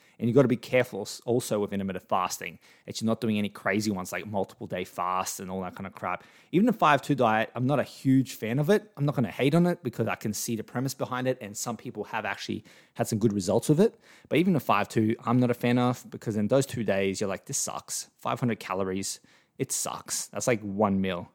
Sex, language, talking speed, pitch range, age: male, English, 255 wpm, 100-120 Hz, 20-39